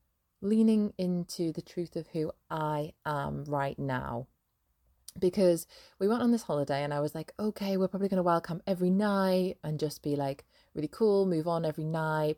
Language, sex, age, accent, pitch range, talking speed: English, female, 20-39, British, 145-180 Hz, 185 wpm